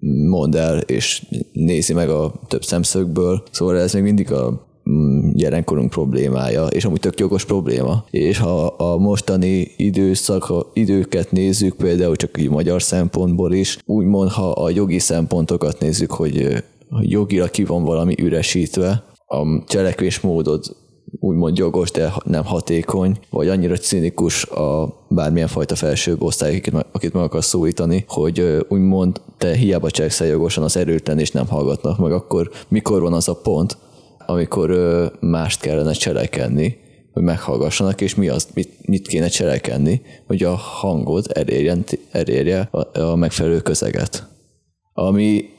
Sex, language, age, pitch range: male, Hungarian, 20-39, 85-95 Hz